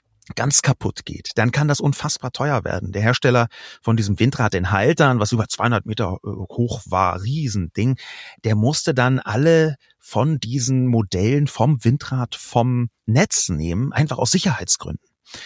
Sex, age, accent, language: male, 30-49, German, German